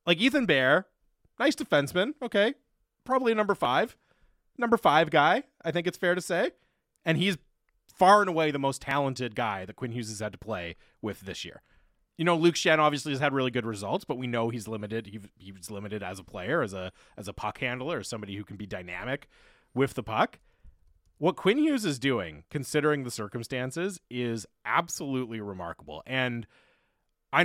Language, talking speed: English, 190 wpm